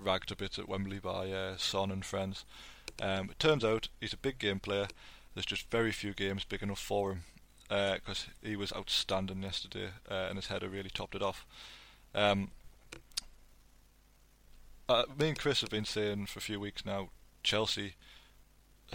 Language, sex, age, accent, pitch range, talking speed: English, male, 20-39, British, 100-110 Hz, 175 wpm